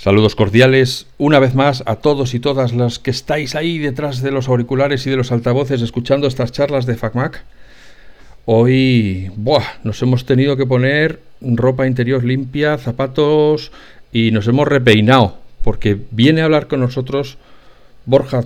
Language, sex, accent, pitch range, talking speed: Spanish, male, Spanish, 110-135 Hz, 155 wpm